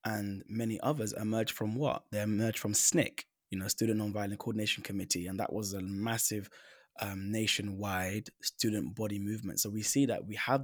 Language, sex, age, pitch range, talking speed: English, male, 20-39, 105-125 Hz, 180 wpm